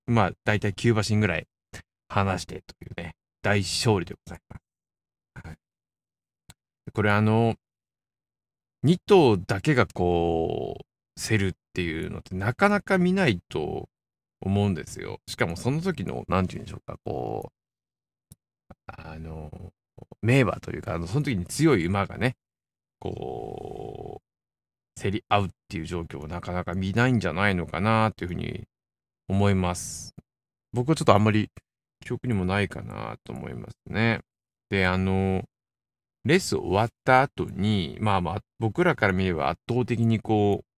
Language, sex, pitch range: Japanese, male, 90-115 Hz